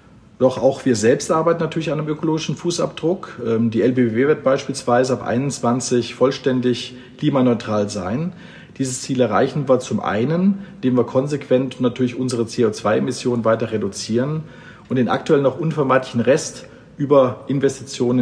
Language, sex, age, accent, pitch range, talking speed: German, male, 50-69, German, 115-140 Hz, 135 wpm